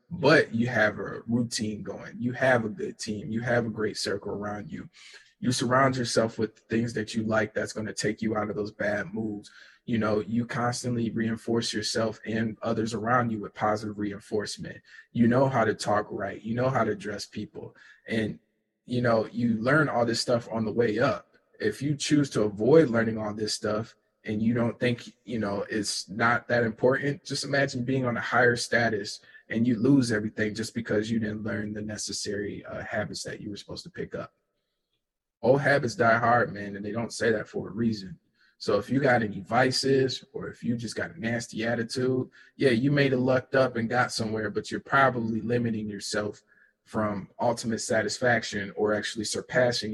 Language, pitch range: English, 105-120 Hz